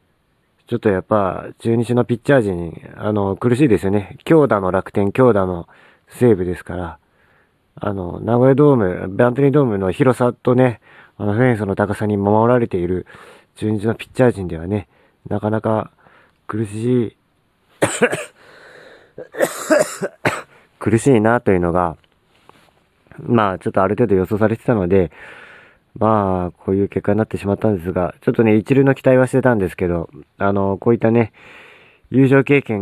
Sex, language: male, Japanese